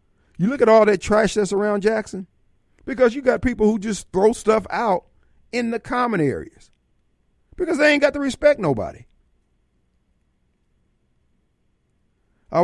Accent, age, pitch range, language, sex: American, 50-69, 135-205 Hz, Japanese, male